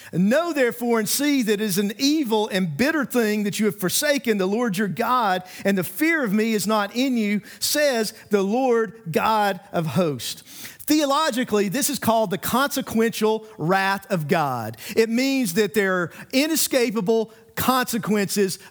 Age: 50-69